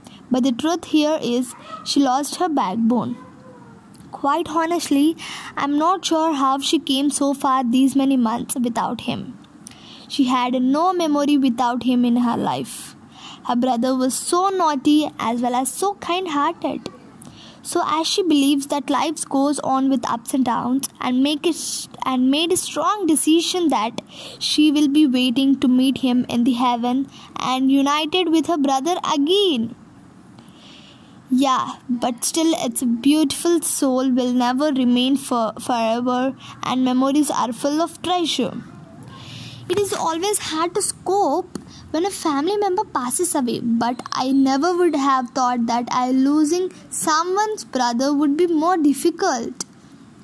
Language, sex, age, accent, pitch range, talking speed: Hindi, female, 20-39, native, 255-325 Hz, 150 wpm